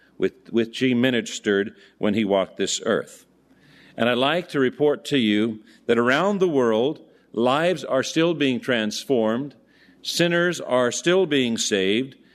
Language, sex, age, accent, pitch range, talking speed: English, male, 50-69, American, 110-140 Hz, 145 wpm